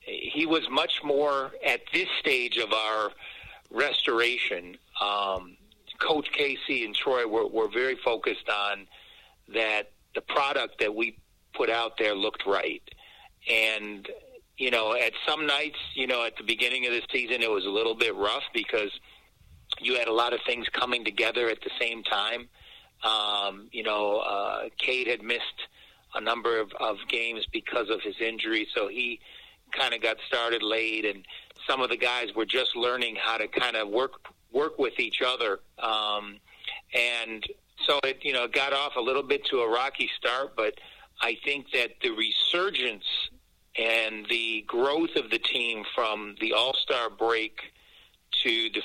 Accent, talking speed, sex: American, 165 wpm, male